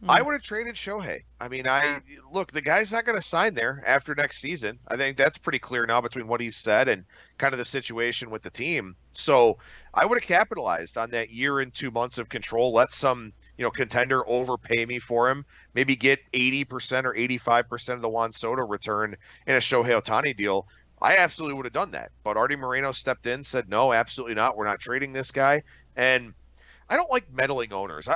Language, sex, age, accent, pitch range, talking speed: English, male, 40-59, American, 120-150 Hz, 215 wpm